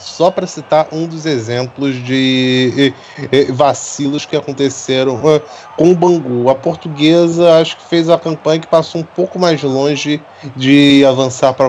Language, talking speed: Portuguese, 150 wpm